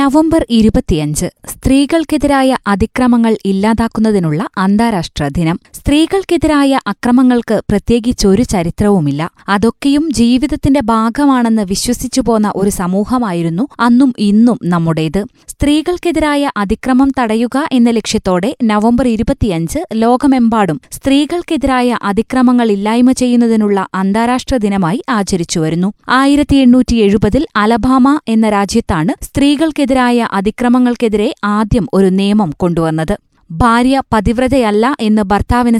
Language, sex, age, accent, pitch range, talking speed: Malayalam, female, 20-39, native, 205-260 Hz, 85 wpm